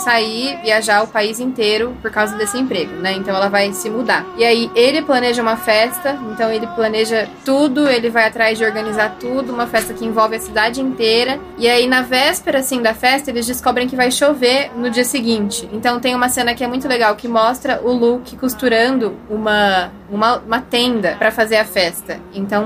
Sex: female